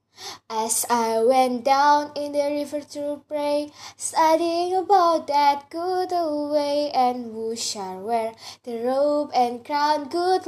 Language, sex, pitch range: Indonesian, female, 285-330 Hz